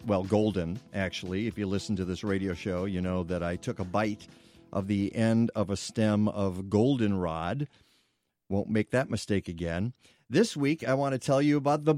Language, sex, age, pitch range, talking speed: English, male, 50-69, 100-150 Hz, 195 wpm